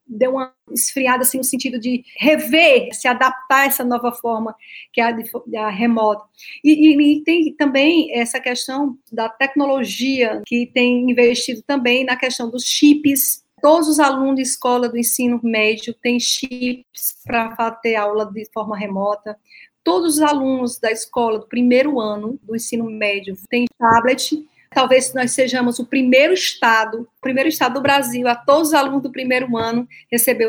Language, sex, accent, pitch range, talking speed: Portuguese, female, Brazilian, 230-275 Hz, 165 wpm